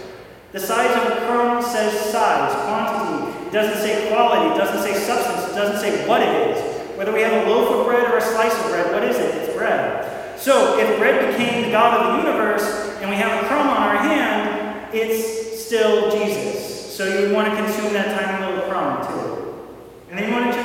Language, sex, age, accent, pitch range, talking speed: English, male, 40-59, American, 190-225 Hz, 220 wpm